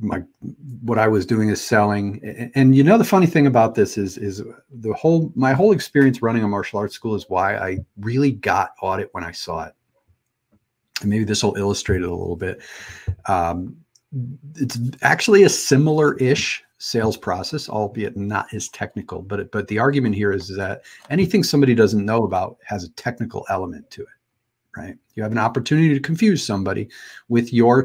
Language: English